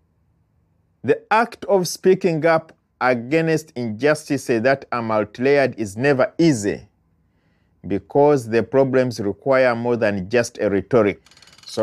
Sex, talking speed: male, 115 wpm